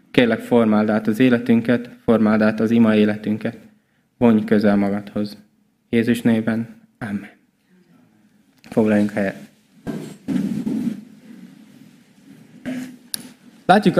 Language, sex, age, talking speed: Hungarian, male, 20-39, 80 wpm